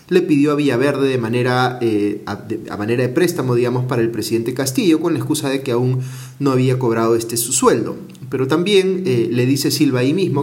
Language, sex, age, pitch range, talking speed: Spanish, male, 30-49, 115-145 Hz, 220 wpm